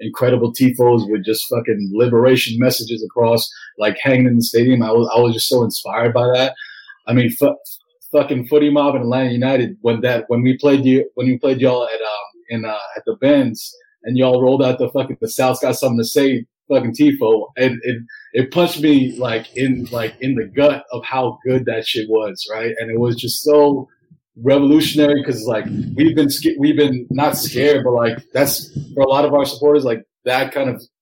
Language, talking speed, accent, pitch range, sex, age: English, 205 wpm, American, 115-145 Hz, male, 30-49